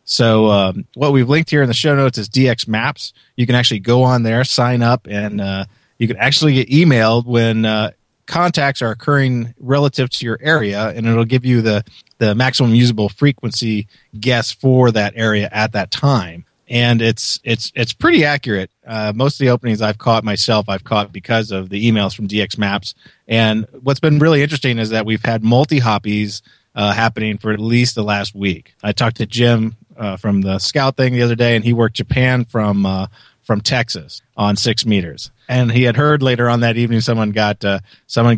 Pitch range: 105-130 Hz